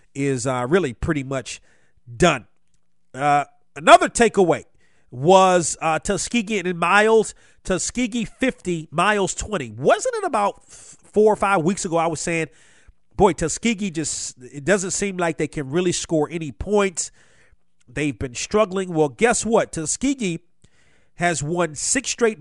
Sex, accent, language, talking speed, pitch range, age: male, American, English, 145 wpm, 150-205 Hz, 40-59